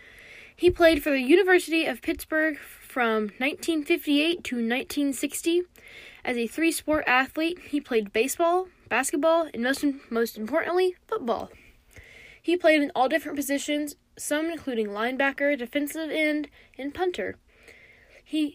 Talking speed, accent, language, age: 125 wpm, American, English, 10-29